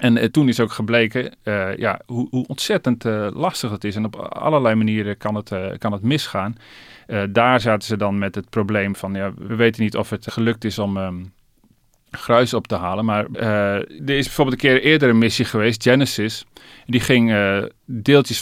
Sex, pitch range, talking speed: male, 105-125 Hz, 190 wpm